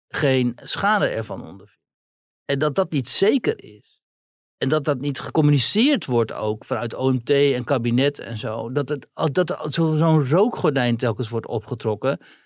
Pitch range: 130-165 Hz